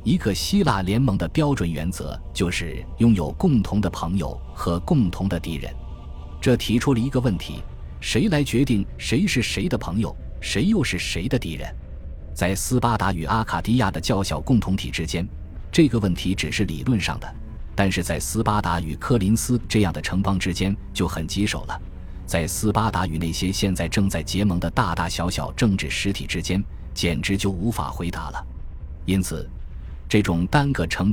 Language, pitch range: Chinese, 80-110 Hz